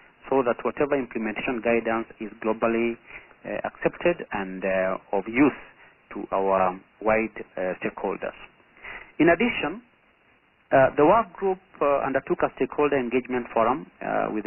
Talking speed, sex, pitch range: 135 wpm, male, 115-145 Hz